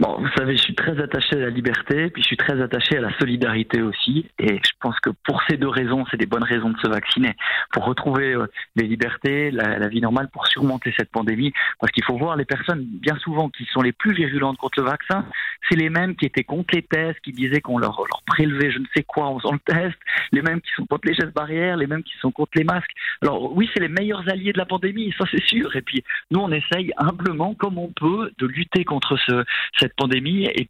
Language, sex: French, male